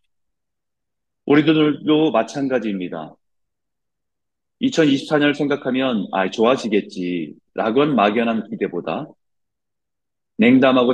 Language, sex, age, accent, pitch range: Korean, male, 30-49, native, 110-155 Hz